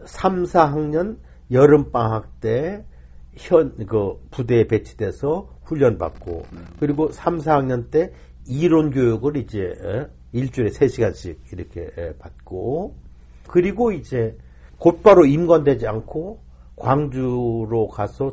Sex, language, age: male, Korean, 50-69